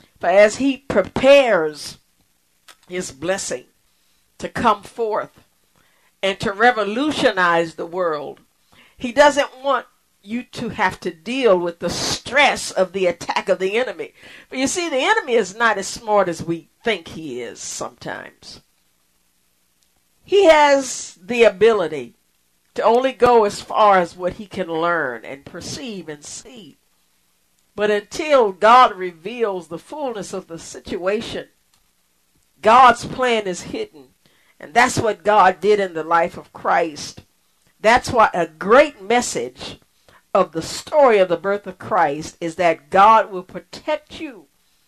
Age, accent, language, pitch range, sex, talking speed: 50-69, American, English, 165-245 Hz, female, 140 wpm